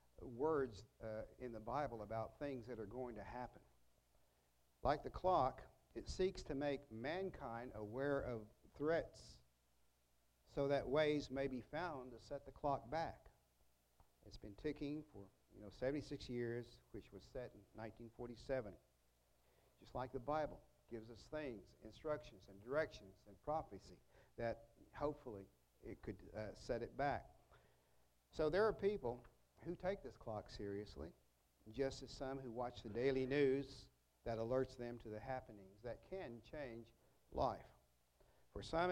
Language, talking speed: English, 150 wpm